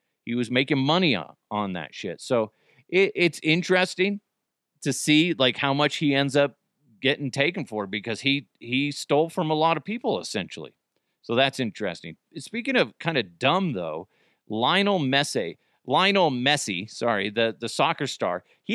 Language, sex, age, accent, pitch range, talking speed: English, male, 40-59, American, 130-165 Hz, 165 wpm